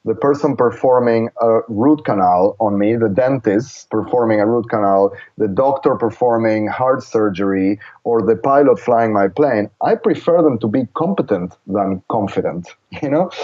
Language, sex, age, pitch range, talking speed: English, male, 30-49, 110-150 Hz, 155 wpm